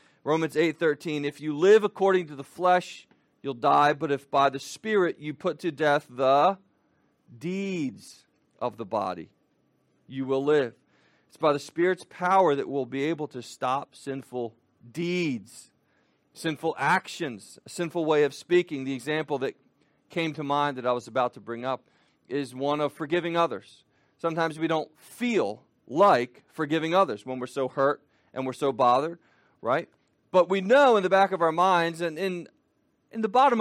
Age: 40-59